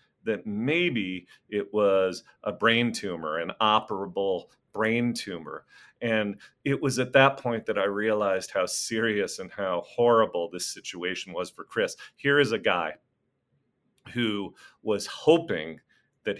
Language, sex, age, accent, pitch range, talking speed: English, male, 40-59, American, 95-120 Hz, 140 wpm